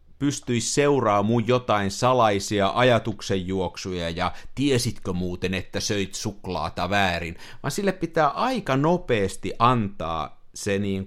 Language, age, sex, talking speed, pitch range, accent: Finnish, 50-69, male, 115 wpm, 95-135 Hz, native